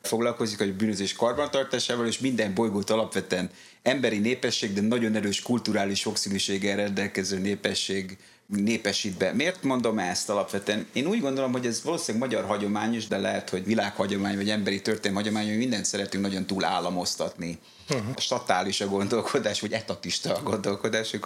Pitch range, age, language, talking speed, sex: 100-115 Hz, 30-49, Hungarian, 145 wpm, male